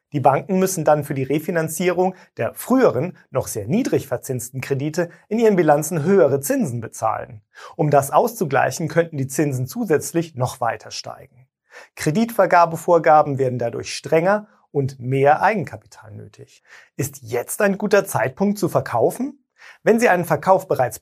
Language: German